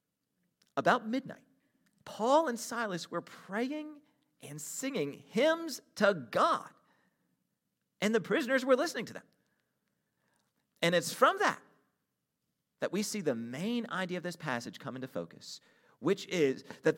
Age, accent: 40-59, American